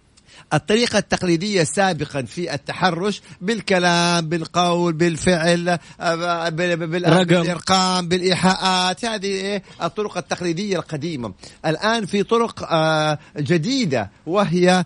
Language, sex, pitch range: Arabic, male, 150-185 Hz